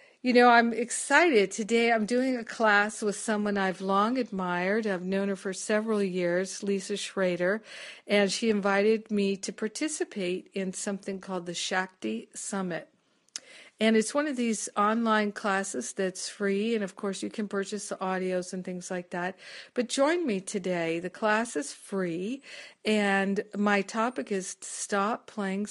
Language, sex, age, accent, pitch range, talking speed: English, female, 50-69, American, 190-225 Hz, 160 wpm